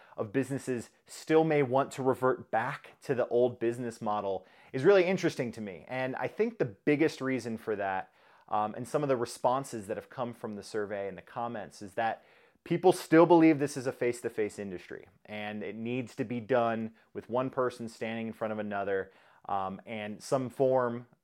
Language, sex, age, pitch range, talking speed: English, male, 30-49, 115-135 Hz, 195 wpm